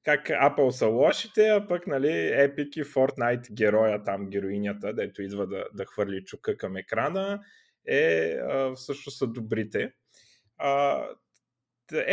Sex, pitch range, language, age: male, 105-140 Hz, Bulgarian, 20-39